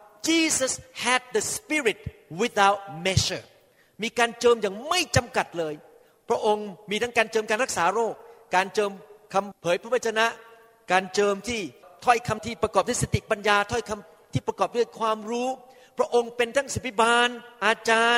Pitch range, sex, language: 185-240 Hz, male, Thai